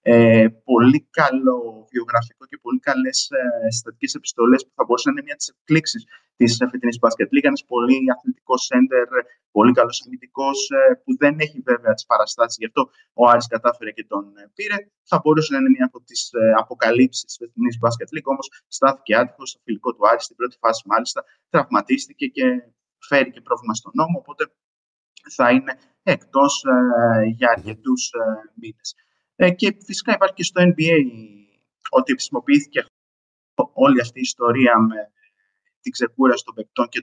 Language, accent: Greek, native